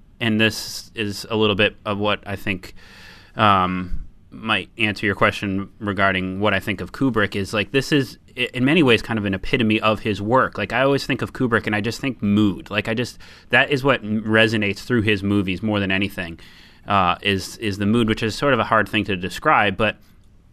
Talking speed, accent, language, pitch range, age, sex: 215 wpm, American, English, 100-115 Hz, 30-49, male